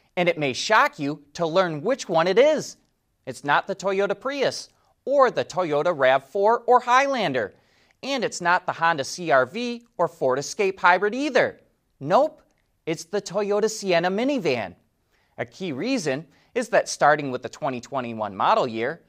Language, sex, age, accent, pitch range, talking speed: English, male, 30-49, American, 135-220 Hz, 155 wpm